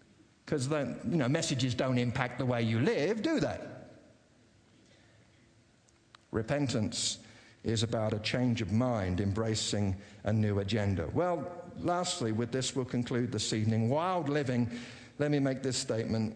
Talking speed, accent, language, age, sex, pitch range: 140 wpm, British, English, 50-69, male, 110-145 Hz